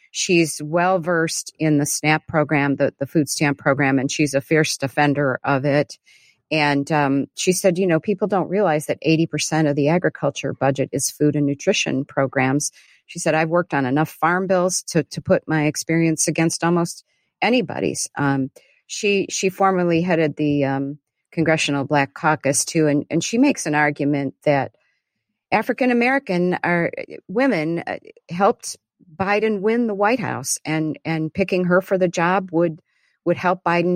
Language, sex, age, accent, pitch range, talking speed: English, female, 50-69, American, 145-180 Hz, 165 wpm